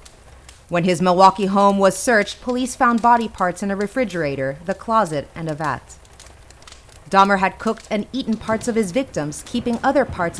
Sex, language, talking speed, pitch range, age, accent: female, English, 175 wpm, 155-225 Hz, 30-49, American